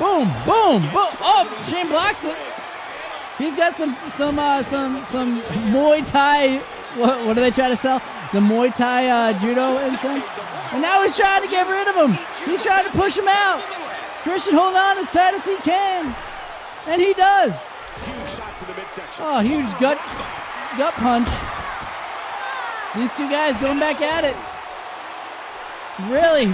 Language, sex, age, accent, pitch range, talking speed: English, male, 20-39, American, 260-340 Hz, 165 wpm